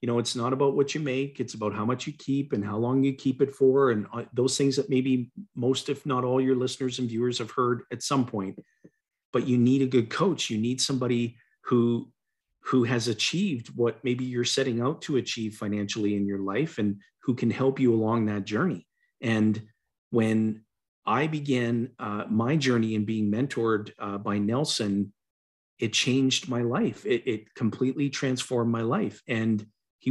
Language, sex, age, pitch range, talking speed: English, male, 40-59, 110-135 Hz, 190 wpm